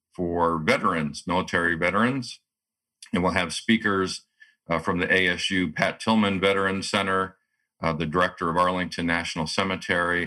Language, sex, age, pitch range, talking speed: English, male, 50-69, 80-95 Hz, 135 wpm